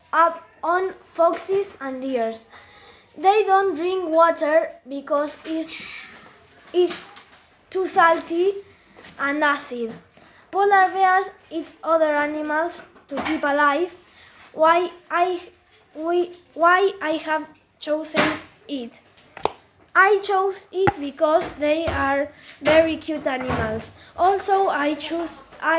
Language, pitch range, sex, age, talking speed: English, 290-350 Hz, female, 20-39, 100 wpm